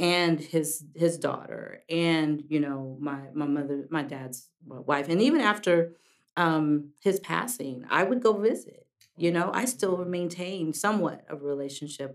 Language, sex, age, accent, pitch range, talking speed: English, female, 40-59, American, 145-180 Hz, 160 wpm